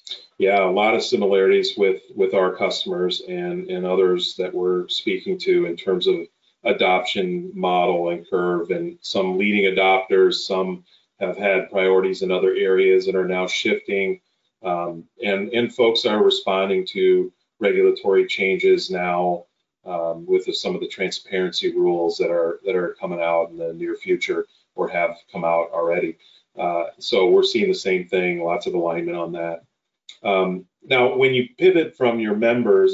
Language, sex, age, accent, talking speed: English, male, 30-49, American, 165 wpm